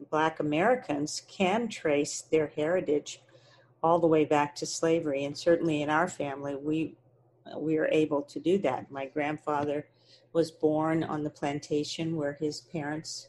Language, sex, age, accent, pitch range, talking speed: English, female, 50-69, American, 145-170 Hz, 155 wpm